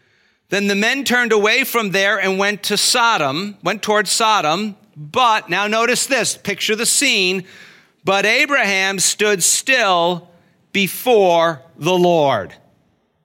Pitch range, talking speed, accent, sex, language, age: 160-205 Hz, 125 wpm, American, male, English, 40-59